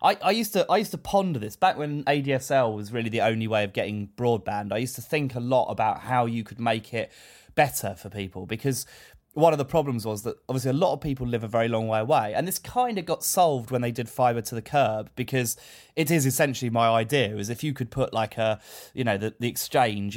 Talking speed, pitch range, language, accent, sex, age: 255 wpm, 110-135 Hz, English, British, male, 20-39